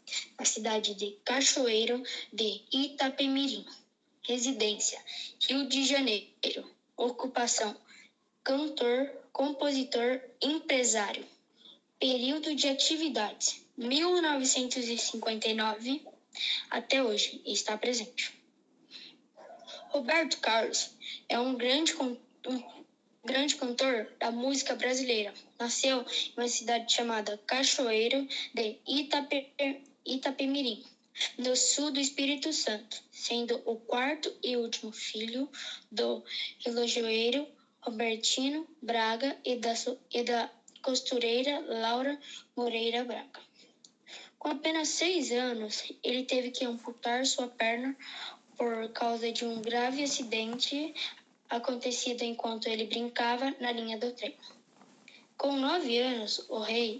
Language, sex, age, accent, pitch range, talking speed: Portuguese, female, 10-29, Brazilian, 230-275 Hz, 95 wpm